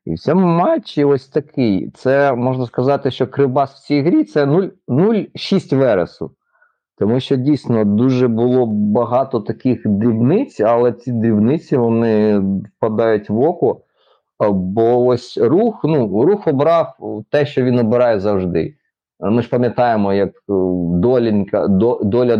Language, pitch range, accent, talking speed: Ukrainian, 105-140 Hz, native, 130 wpm